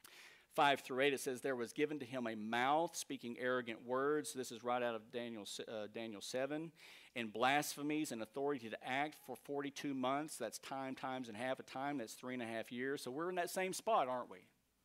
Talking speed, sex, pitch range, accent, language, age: 220 wpm, male, 125-160 Hz, American, English, 50-69